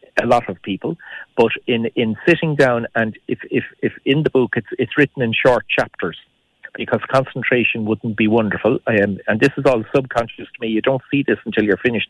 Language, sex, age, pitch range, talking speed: English, male, 40-59, 105-125 Hz, 215 wpm